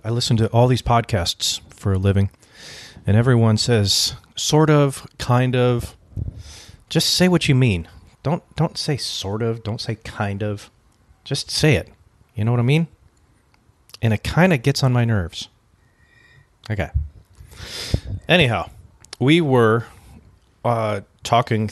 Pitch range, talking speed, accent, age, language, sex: 100-120 Hz, 145 wpm, American, 30-49, English, male